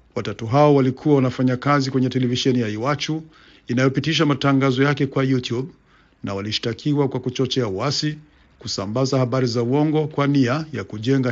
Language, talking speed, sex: Swahili, 145 wpm, male